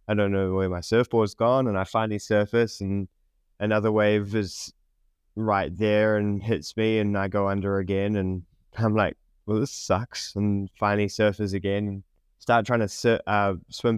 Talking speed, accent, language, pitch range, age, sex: 180 wpm, Australian, English, 90-105 Hz, 20-39, male